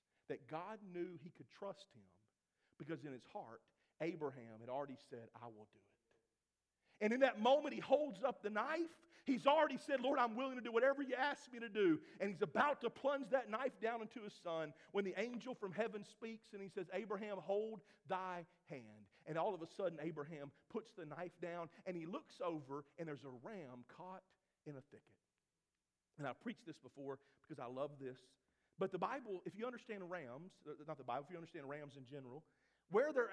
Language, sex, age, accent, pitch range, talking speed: English, male, 40-59, American, 155-220 Hz, 205 wpm